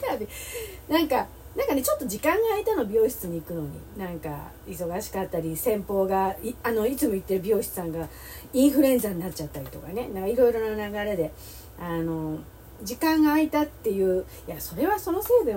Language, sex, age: Japanese, female, 40-59